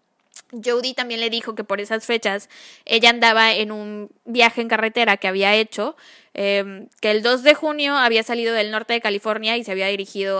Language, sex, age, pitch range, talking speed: Spanish, female, 10-29, 210-255 Hz, 195 wpm